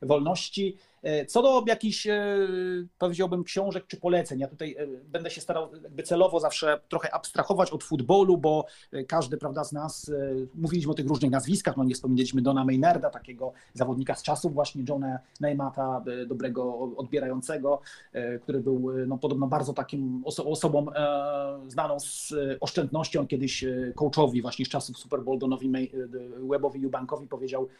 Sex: male